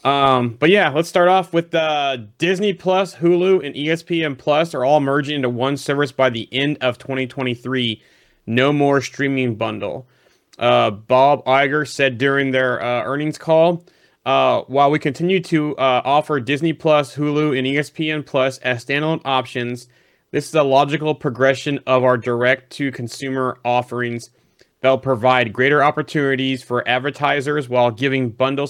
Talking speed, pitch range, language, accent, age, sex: 150 wpm, 125-145 Hz, English, American, 30-49, male